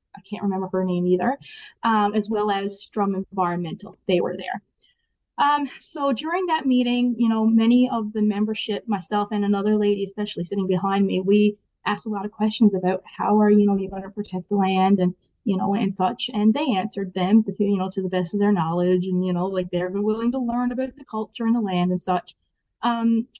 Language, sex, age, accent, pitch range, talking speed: English, female, 20-39, American, 195-230 Hz, 215 wpm